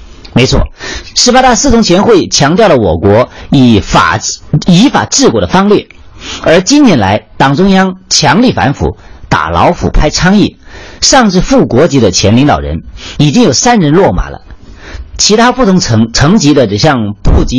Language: Chinese